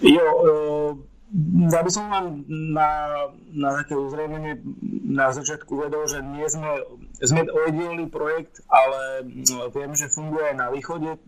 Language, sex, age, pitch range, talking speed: Slovak, male, 30-49, 130-155 Hz, 120 wpm